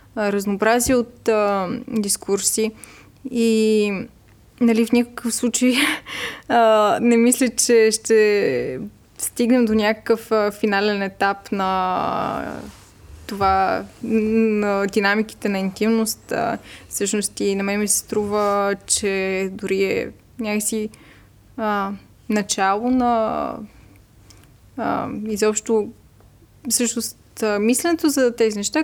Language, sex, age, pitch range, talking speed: Bulgarian, female, 20-39, 195-240 Hz, 85 wpm